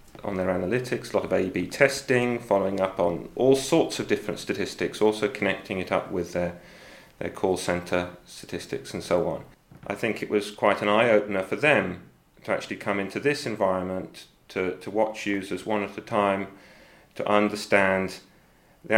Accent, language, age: British, English, 40-59